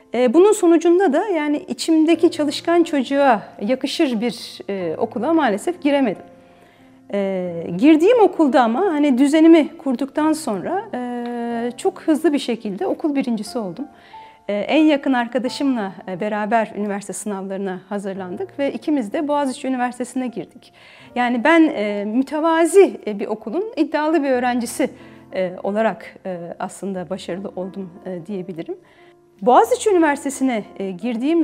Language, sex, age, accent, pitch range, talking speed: Turkish, female, 40-59, native, 210-305 Hz, 105 wpm